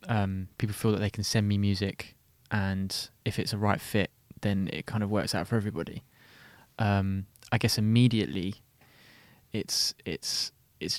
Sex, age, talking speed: male, 20-39, 165 wpm